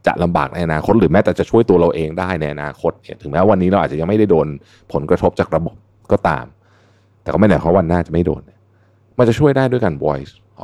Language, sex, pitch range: Thai, male, 90-115 Hz